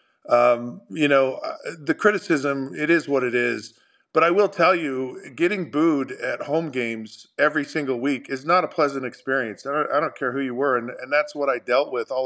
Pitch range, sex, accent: 125-150 Hz, male, American